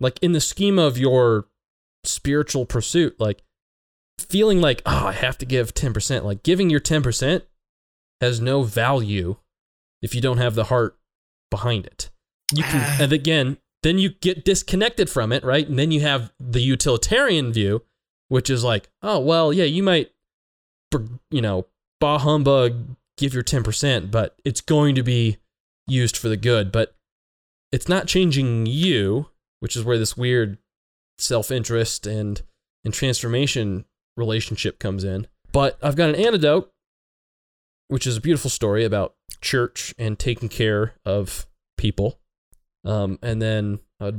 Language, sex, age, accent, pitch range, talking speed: English, male, 20-39, American, 105-145 Hz, 150 wpm